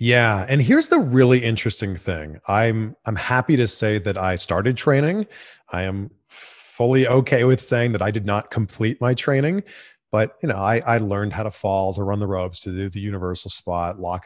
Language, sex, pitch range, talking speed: English, male, 100-140 Hz, 200 wpm